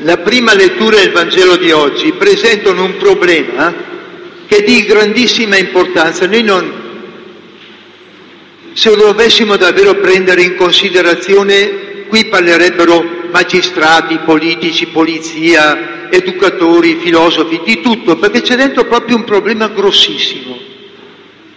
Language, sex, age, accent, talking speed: Italian, male, 60-79, native, 110 wpm